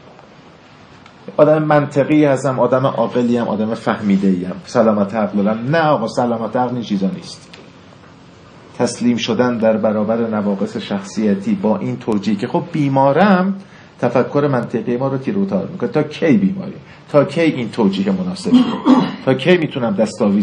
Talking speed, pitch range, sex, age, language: 130 wpm, 135-190 Hz, male, 50-69, Persian